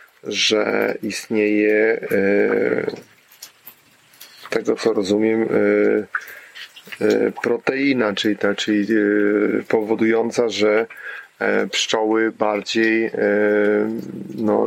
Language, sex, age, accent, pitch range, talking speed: Polish, male, 30-49, native, 105-120 Hz, 55 wpm